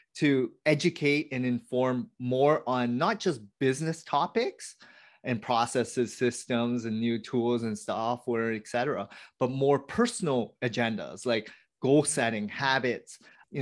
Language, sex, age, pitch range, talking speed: English, male, 30-49, 125-155 Hz, 130 wpm